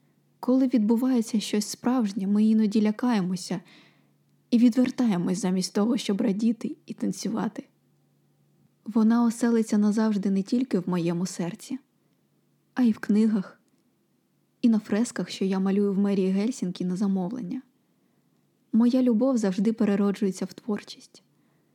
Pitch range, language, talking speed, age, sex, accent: 200-240 Hz, Ukrainian, 120 wpm, 20-39, female, native